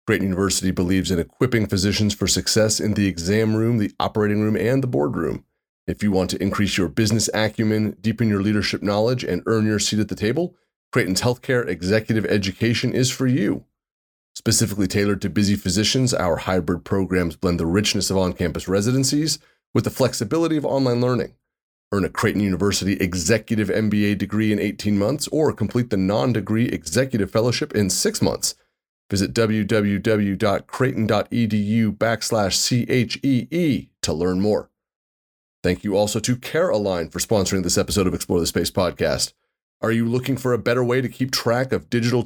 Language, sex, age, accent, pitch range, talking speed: English, male, 30-49, American, 100-120 Hz, 165 wpm